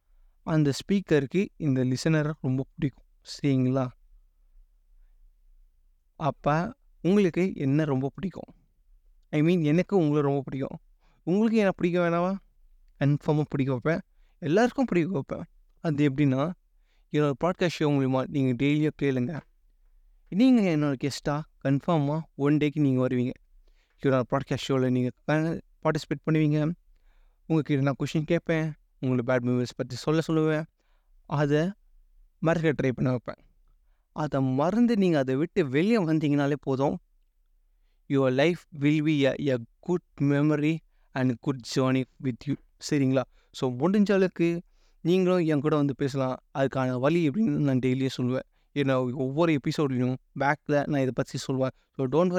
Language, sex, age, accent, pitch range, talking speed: Tamil, male, 20-39, native, 130-160 Hz, 125 wpm